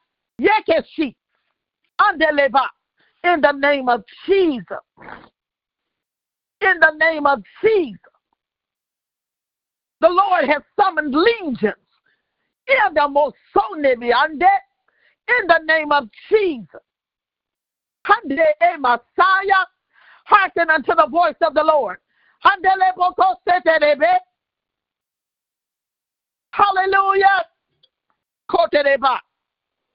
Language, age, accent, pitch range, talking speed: English, 50-69, American, 290-385 Hz, 65 wpm